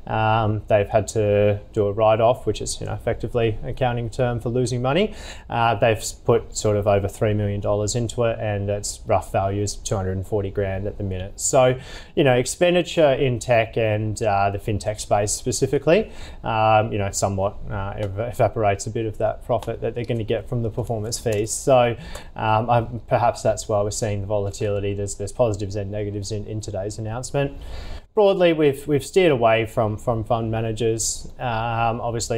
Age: 20-39